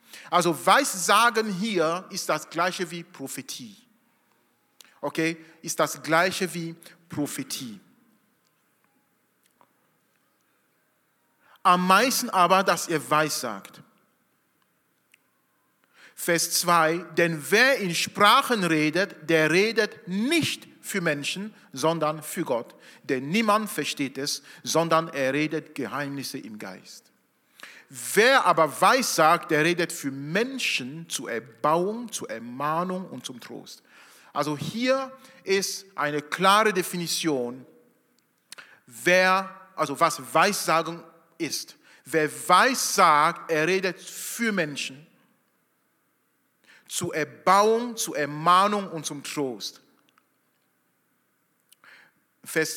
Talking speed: 100 wpm